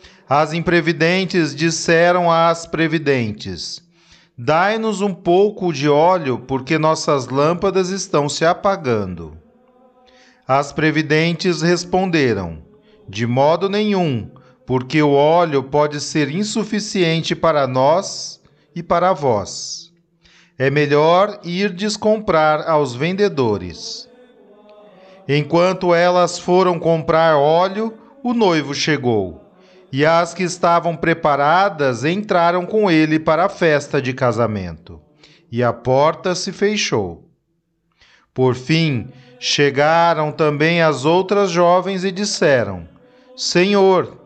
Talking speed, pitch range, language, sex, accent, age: 100 wpm, 145-190 Hz, Portuguese, male, Brazilian, 40-59